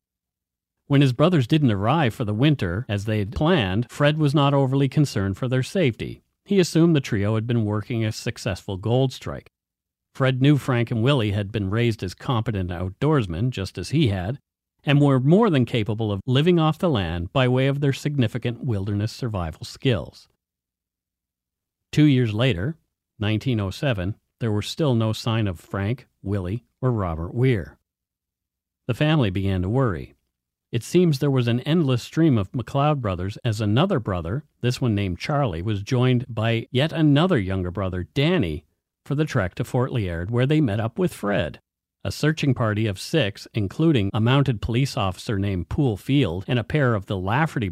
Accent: American